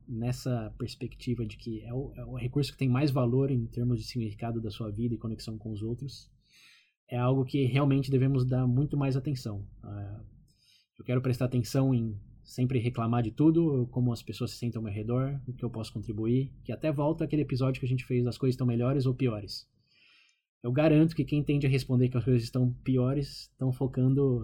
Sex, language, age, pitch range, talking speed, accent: male, Portuguese, 20-39, 115-135 Hz, 210 wpm, Brazilian